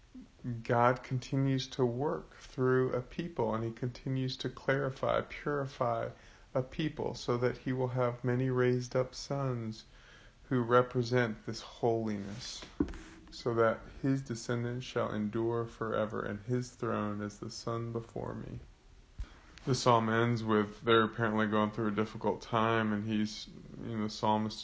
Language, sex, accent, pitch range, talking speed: English, male, American, 110-125 Hz, 145 wpm